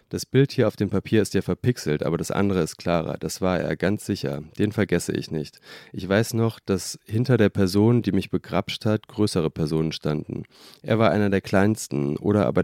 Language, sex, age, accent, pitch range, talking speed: German, male, 40-59, German, 95-120 Hz, 210 wpm